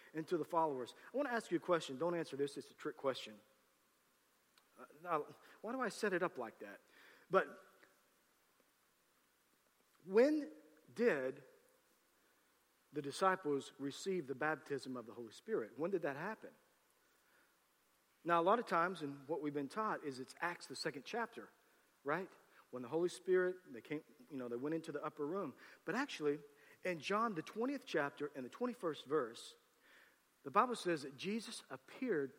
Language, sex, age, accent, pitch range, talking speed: English, male, 40-59, American, 140-195 Hz, 170 wpm